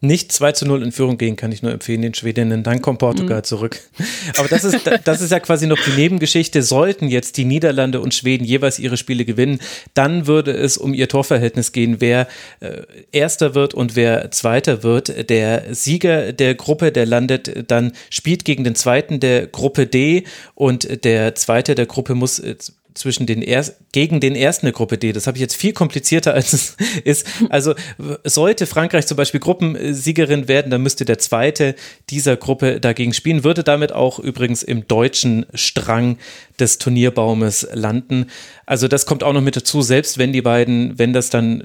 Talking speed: 185 wpm